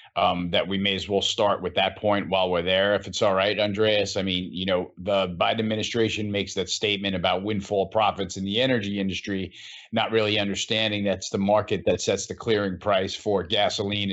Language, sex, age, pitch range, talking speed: English, male, 40-59, 100-110 Hz, 205 wpm